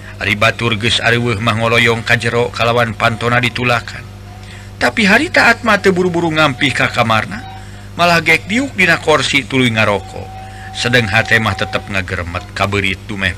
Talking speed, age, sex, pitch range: 140 wpm, 50-69, male, 100-120 Hz